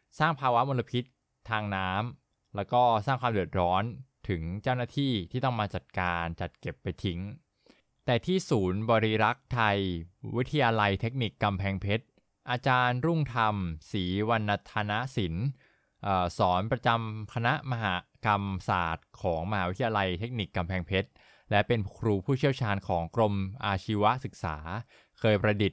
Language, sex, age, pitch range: Thai, male, 20-39, 95-125 Hz